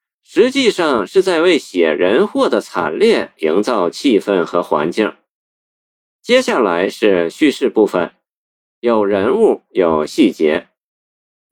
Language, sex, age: Chinese, male, 50-69